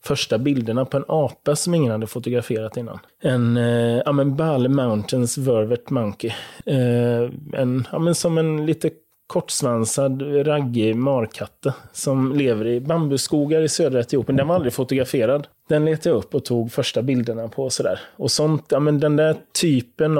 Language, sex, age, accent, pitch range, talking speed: Swedish, male, 30-49, native, 120-150 Hz, 165 wpm